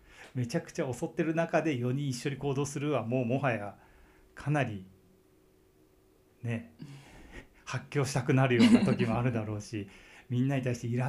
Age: 40-59